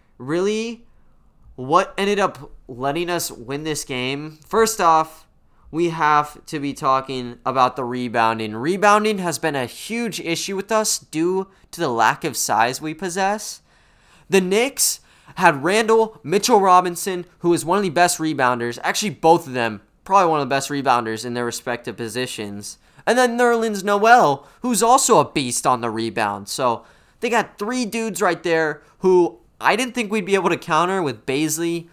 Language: English